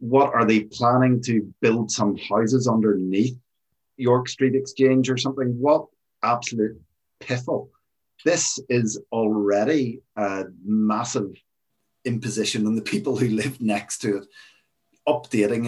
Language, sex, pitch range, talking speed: English, male, 95-110 Hz, 125 wpm